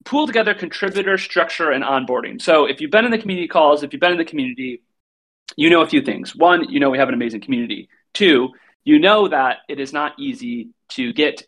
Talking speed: 225 wpm